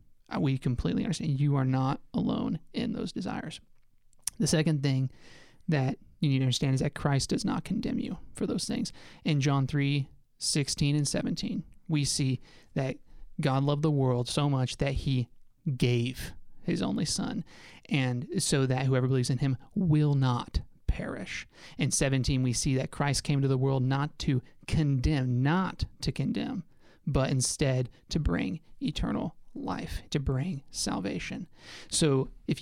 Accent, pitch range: American, 135-155 Hz